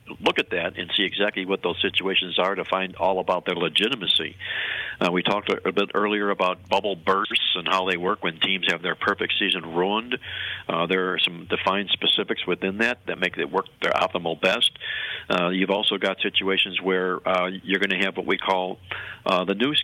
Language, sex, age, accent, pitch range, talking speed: English, male, 50-69, American, 90-100 Hz, 205 wpm